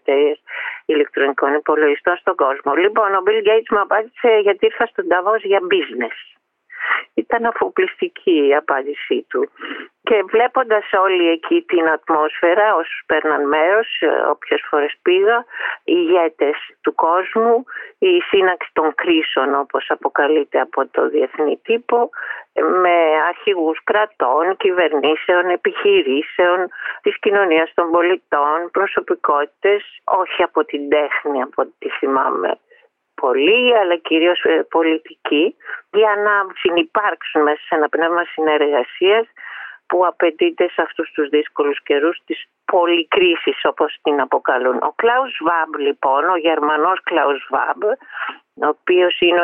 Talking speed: 120 wpm